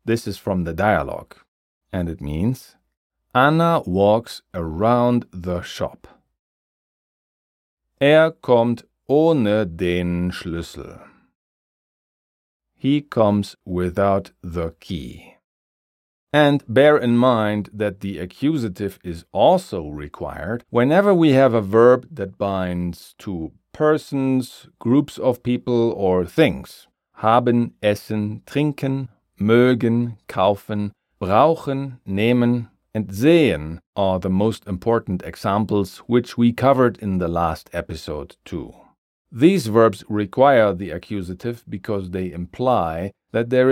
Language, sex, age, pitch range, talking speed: German, male, 40-59, 90-125 Hz, 110 wpm